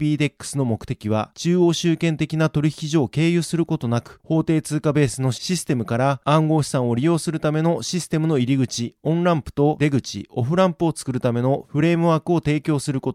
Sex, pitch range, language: male, 130-165 Hz, Japanese